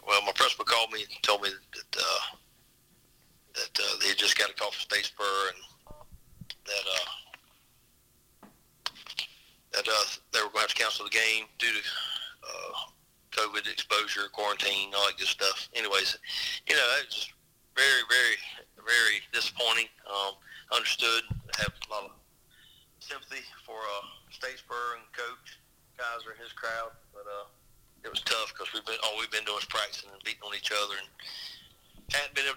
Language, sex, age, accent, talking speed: English, male, 40-59, American, 165 wpm